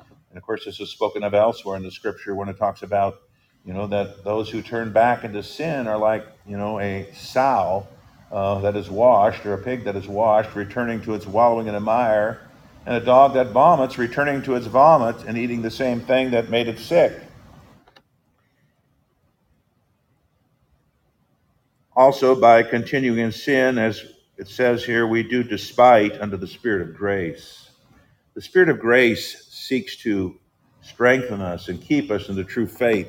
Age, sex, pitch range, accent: 50-69, male, 100-125 Hz, American